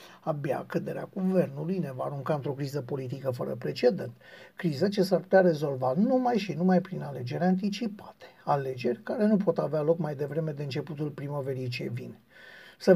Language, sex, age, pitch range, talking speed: Romanian, male, 60-79, 160-195 Hz, 165 wpm